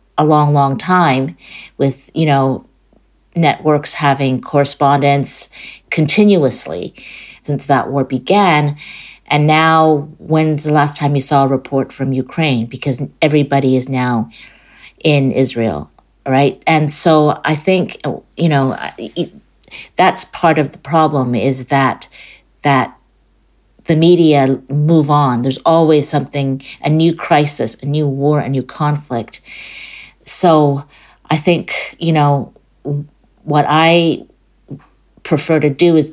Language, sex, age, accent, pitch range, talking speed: English, female, 50-69, American, 140-165 Hz, 125 wpm